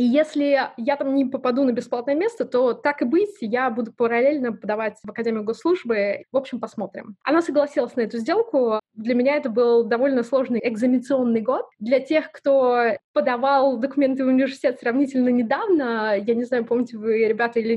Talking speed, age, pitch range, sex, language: 175 wpm, 20-39, 225-270 Hz, female, Russian